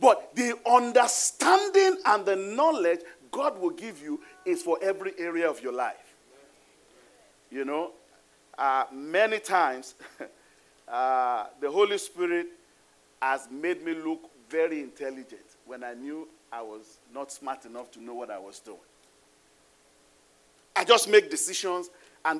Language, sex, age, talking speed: English, male, 40-59, 135 wpm